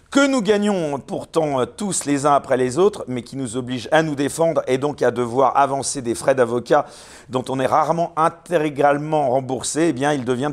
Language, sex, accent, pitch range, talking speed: French, male, French, 125-160 Hz, 200 wpm